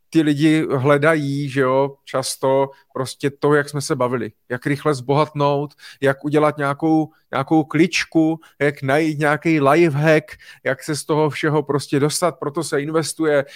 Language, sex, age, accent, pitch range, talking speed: Czech, male, 30-49, native, 135-155 Hz, 155 wpm